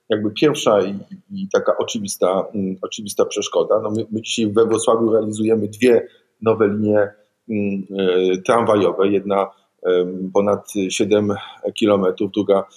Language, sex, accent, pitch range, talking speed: Polish, male, native, 100-135 Hz, 120 wpm